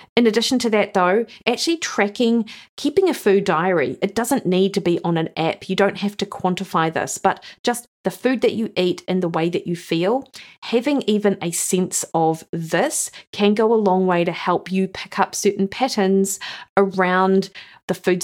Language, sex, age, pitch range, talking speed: English, female, 40-59, 170-205 Hz, 195 wpm